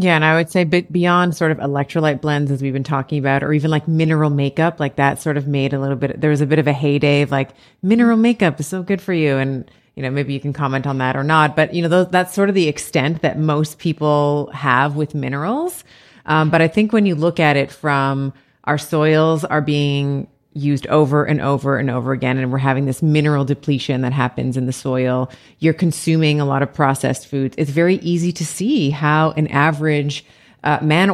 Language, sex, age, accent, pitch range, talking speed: English, female, 30-49, American, 140-175 Hz, 230 wpm